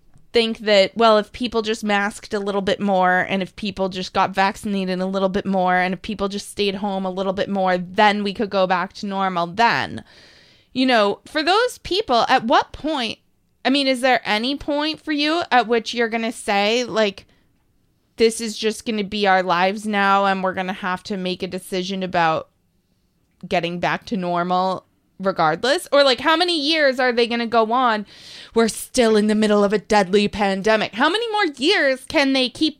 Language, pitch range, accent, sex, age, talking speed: English, 195-265 Hz, American, female, 20-39, 205 wpm